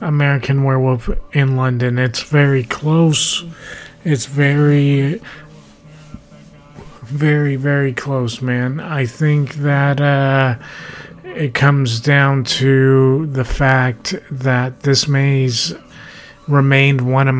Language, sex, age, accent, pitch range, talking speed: English, male, 30-49, American, 125-140 Hz, 100 wpm